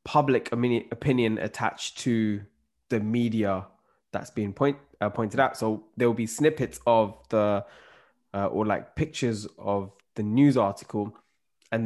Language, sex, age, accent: English, male, 20-39, British